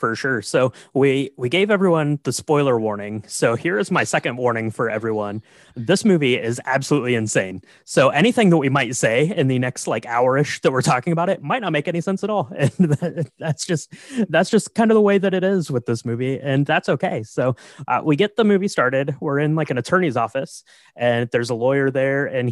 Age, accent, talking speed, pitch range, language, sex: 20-39, American, 220 wpm, 125-165 Hz, English, male